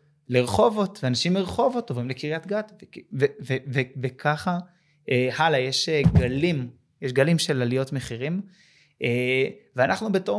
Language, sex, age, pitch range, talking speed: Hebrew, male, 20-39, 130-165 Hz, 120 wpm